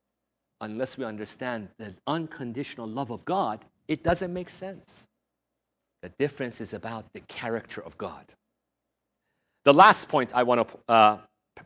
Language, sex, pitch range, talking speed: English, male, 115-175 Hz, 135 wpm